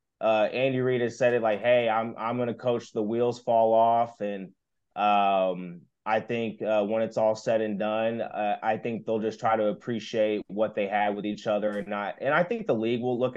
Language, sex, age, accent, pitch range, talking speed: English, male, 20-39, American, 110-130 Hz, 230 wpm